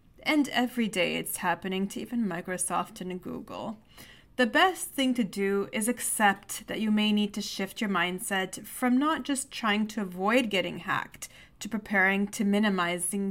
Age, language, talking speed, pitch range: 30-49, English, 165 wpm, 200-270 Hz